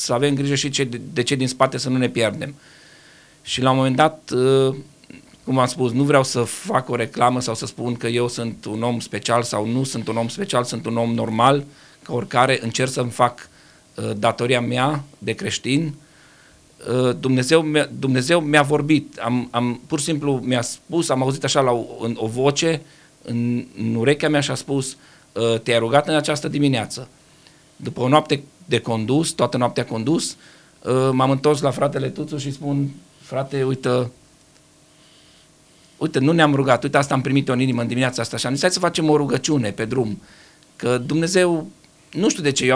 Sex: male